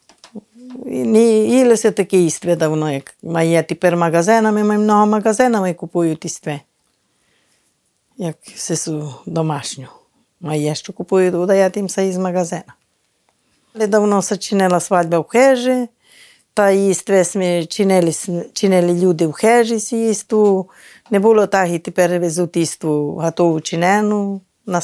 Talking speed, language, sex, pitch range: 120 wpm, Ukrainian, female, 175-215 Hz